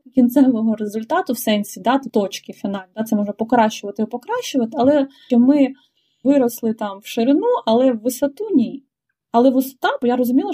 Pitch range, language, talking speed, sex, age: 220-265 Hz, Ukrainian, 165 wpm, female, 20-39